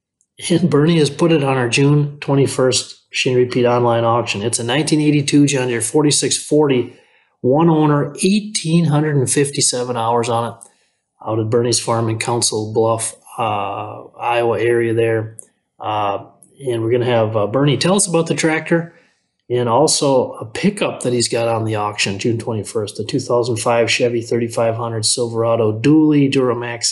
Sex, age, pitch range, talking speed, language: male, 30-49, 115-145 Hz, 150 wpm, English